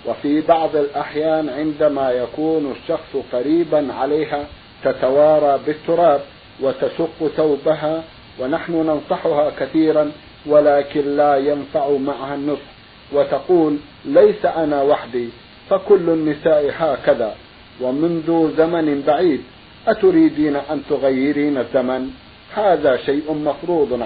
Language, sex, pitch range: Arabic, male, 135-155 Hz